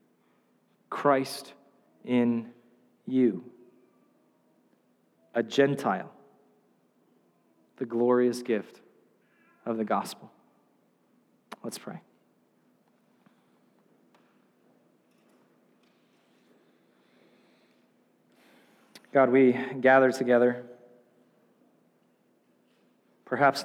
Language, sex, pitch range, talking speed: English, male, 120-140 Hz, 45 wpm